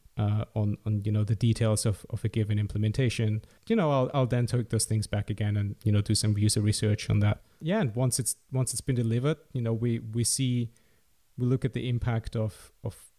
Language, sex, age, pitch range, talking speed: English, male, 30-49, 110-125 Hz, 230 wpm